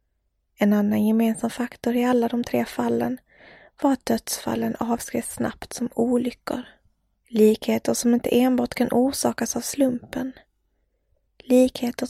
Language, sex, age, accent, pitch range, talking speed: English, female, 20-39, Swedish, 225-250 Hz, 125 wpm